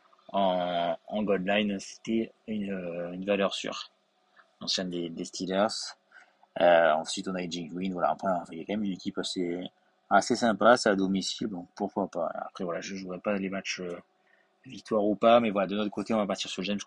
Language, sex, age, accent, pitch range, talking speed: French, male, 20-39, French, 90-100 Hz, 205 wpm